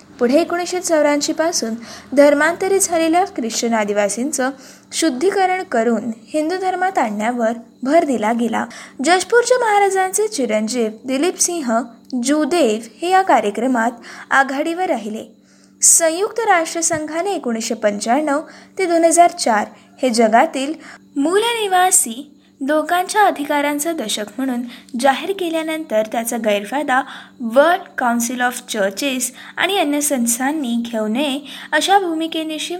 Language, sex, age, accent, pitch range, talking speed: Marathi, female, 20-39, native, 240-345 Hz, 70 wpm